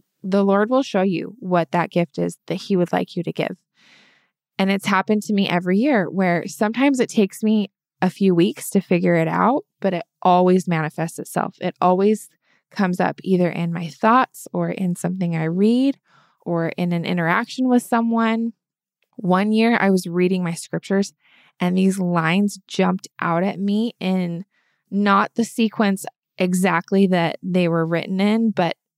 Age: 20-39